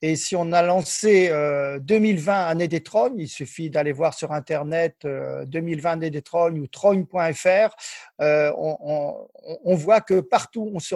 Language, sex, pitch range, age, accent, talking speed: French, male, 160-195 Hz, 50-69, French, 175 wpm